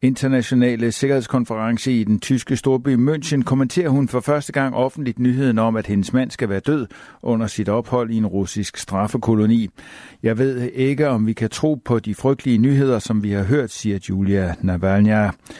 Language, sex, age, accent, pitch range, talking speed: Danish, male, 60-79, native, 105-130 Hz, 175 wpm